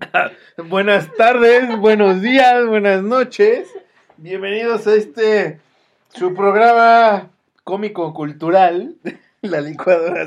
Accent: Mexican